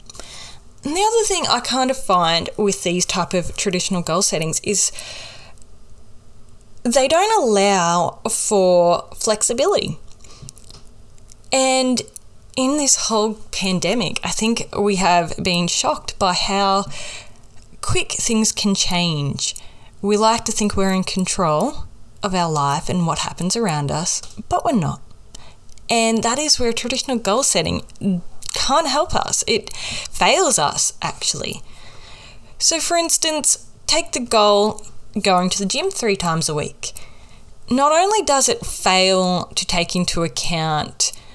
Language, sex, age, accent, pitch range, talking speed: English, female, 10-29, Australian, 155-225 Hz, 135 wpm